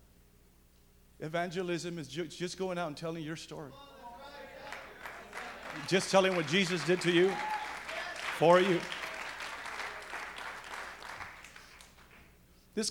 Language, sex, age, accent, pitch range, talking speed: English, male, 50-69, American, 125-185 Hz, 90 wpm